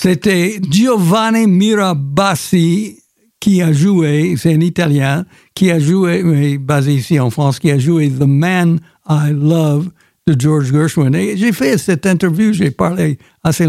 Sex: male